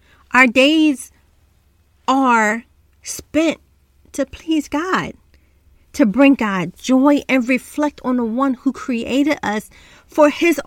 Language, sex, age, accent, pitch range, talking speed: English, female, 30-49, American, 220-285 Hz, 120 wpm